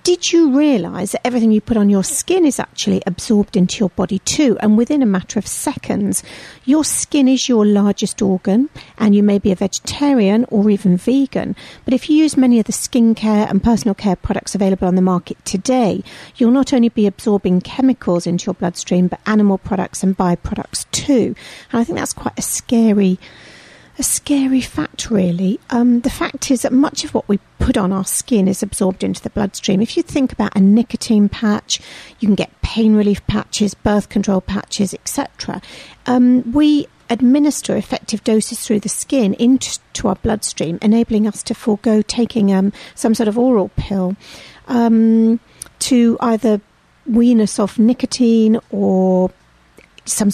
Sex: female